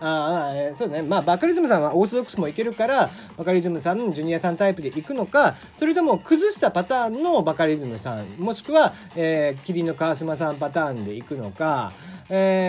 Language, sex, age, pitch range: Japanese, male, 40-59, 165-275 Hz